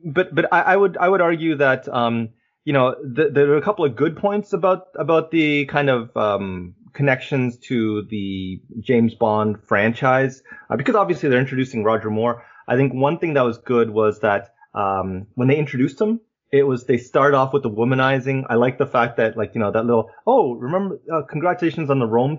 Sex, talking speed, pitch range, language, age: male, 210 wpm, 115-150 Hz, English, 30-49